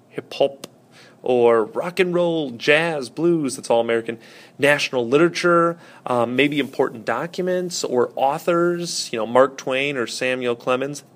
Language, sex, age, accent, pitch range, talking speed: English, male, 30-49, American, 125-155 Hz, 135 wpm